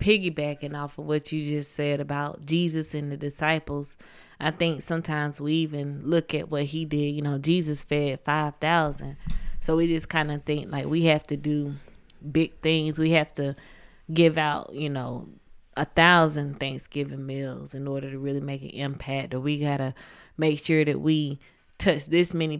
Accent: American